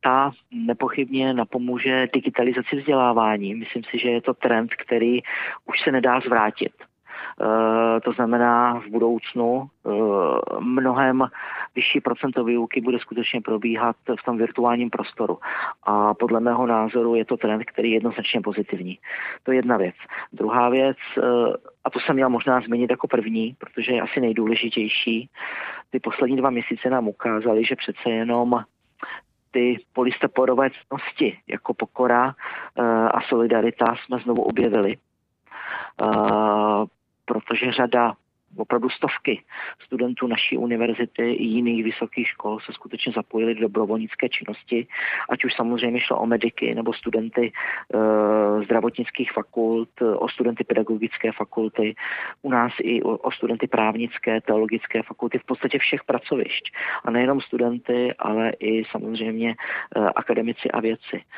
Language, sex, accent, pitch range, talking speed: Czech, male, native, 115-125 Hz, 135 wpm